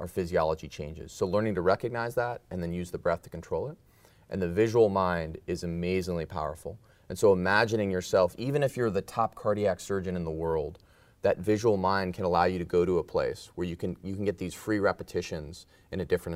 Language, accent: English, American